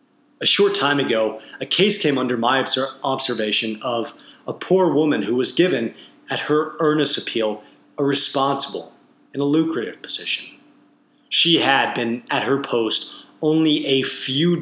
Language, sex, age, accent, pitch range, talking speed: English, male, 30-49, American, 125-160 Hz, 150 wpm